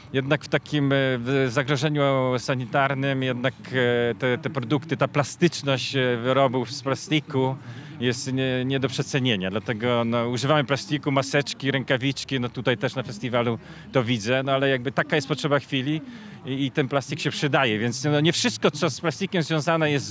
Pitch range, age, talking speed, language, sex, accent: 120-150 Hz, 40-59, 155 wpm, Polish, male, native